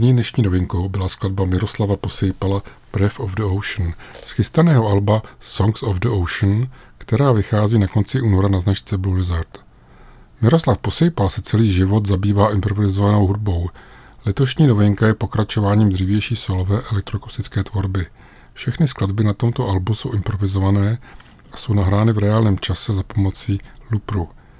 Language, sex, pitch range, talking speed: Czech, male, 95-110 Hz, 140 wpm